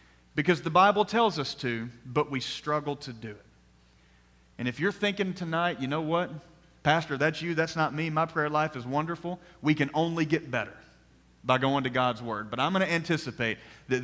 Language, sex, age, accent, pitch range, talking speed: English, male, 40-59, American, 130-170 Hz, 195 wpm